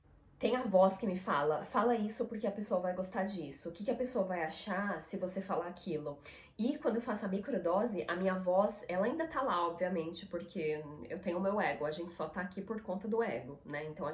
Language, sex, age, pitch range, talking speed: Portuguese, female, 20-39, 180-225 Hz, 240 wpm